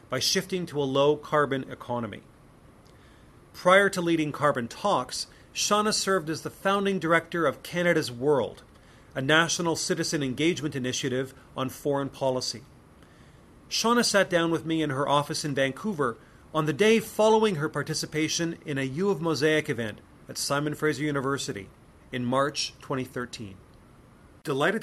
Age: 40-59